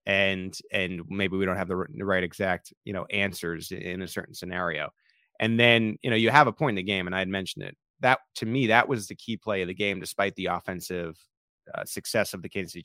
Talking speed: 245 wpm